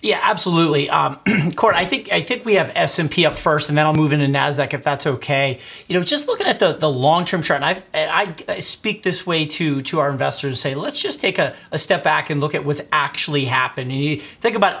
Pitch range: 145-180 Hz